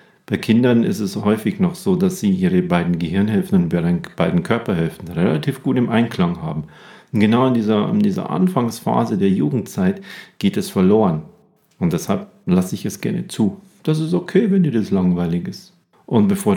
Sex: male